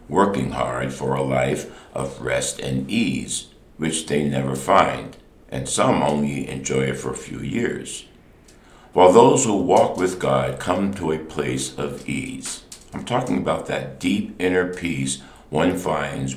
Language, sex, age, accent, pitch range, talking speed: English, male, 60-79, American, 65-80 Hz, 160 wpm